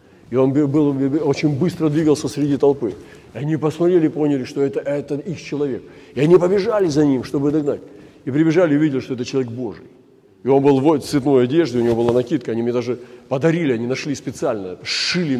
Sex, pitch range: male, 125-155 Hz